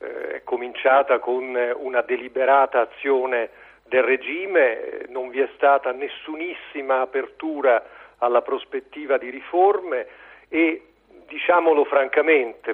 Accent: native